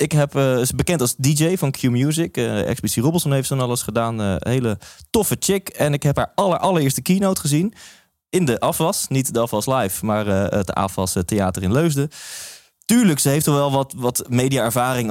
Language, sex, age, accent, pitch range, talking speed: Dutch, male, 20-39, Dutch, 110-145 Hz, 190 wpm